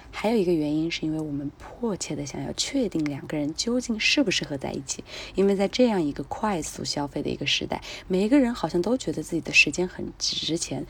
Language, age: Chinese, 20-39